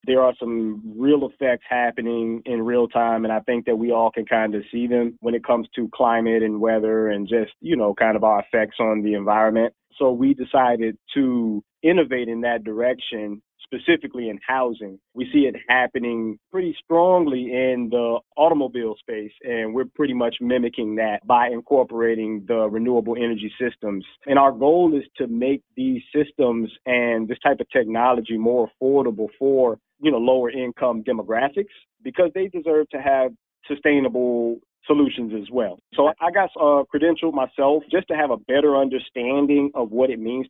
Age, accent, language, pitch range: 30-49, American, English, 115-140 Hz